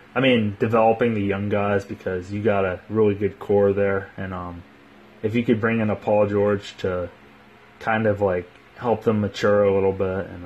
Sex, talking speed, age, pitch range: male, 200 wpm, 20-39, 85-105 Hz